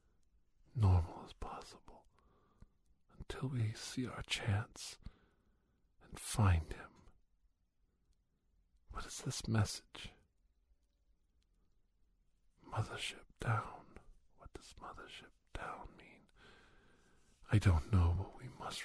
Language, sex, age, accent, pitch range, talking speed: English, male, 50-69, American, 80-130 Hz, 90 wpm